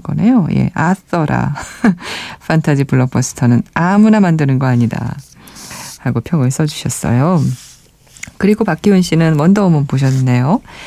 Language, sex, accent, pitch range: Korean, female, native, 135-200 Hz